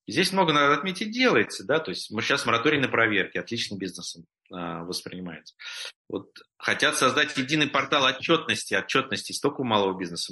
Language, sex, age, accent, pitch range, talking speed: Russian, male, 30-49, native, 100-140 Hz, 155 wpm